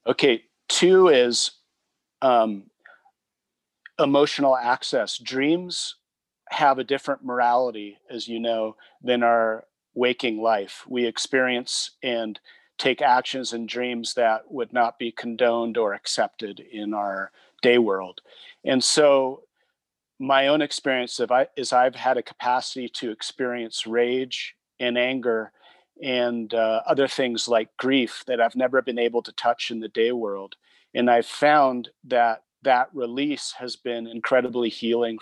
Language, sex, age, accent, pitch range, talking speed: English, male, 40-59, American, 115-130 Hz, 140 wpm